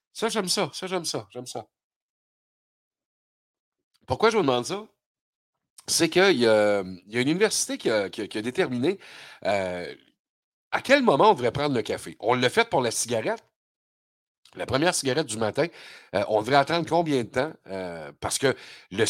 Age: 50-69